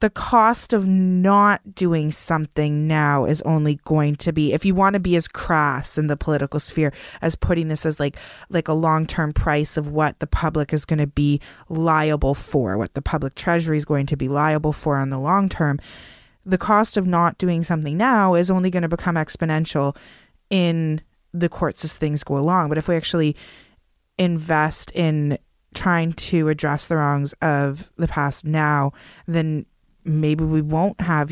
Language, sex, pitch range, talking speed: English, female, 150-190 Hz, 185 wpm